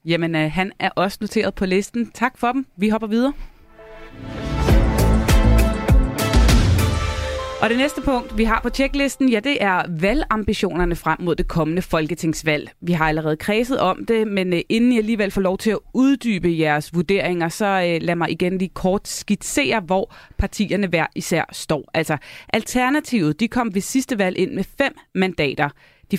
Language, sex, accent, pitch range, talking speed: Danish, female, native, 155-210 Hz, 165 wpm